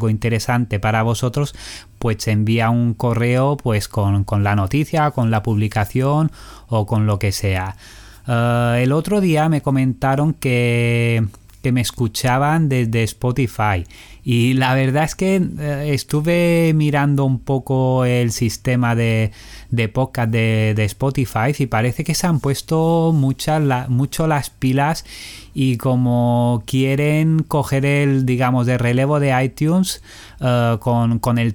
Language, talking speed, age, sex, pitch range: Spanish, 140 wpm, 30-49, male, 110-140 Hz